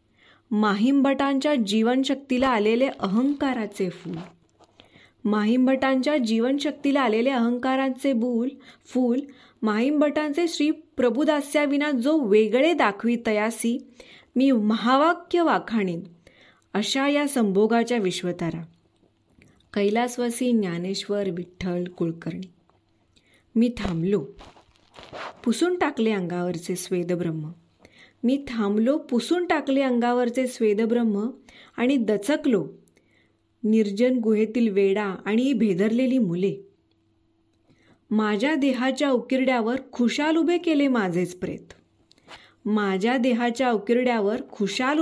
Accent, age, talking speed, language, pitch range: native, 20-39, 85 wpm, Marathi, 200-265 Hz